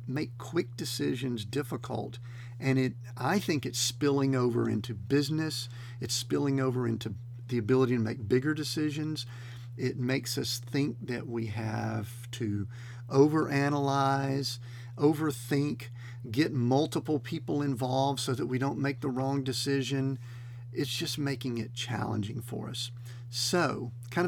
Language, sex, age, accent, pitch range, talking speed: English, male, 50-69, American, 120-140 Hz, 135 wpm